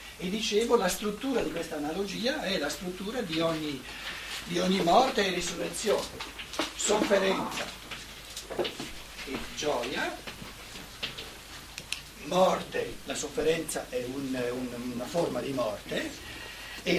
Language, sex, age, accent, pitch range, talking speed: Italian, male, 60-79, native, 155-225 Hz, 100 wpm